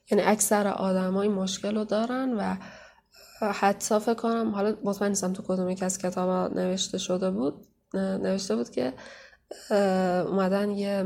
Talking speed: 135 wpm